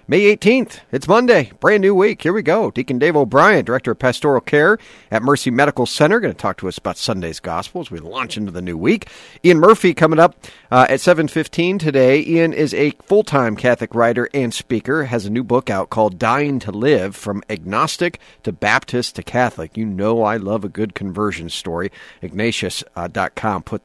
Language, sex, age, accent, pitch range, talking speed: English, male, 40-59, American, 105-155 Hz, 195 wpm